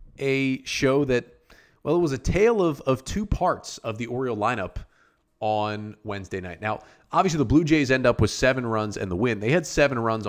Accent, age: American, 30-49